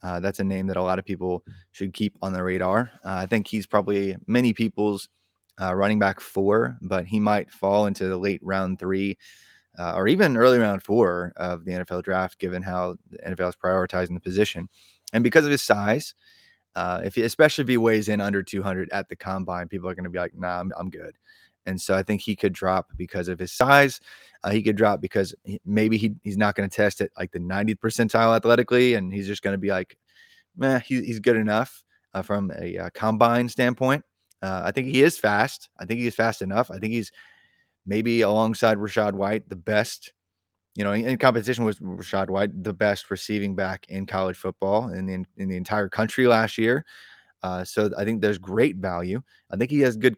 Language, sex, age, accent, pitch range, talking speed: English, male, 20-39, American, 95-115 Hz, 220 wpm